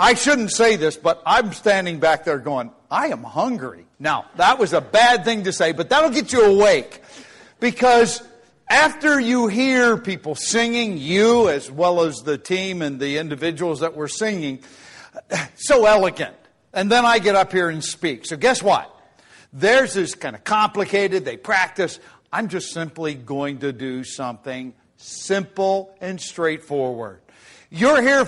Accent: American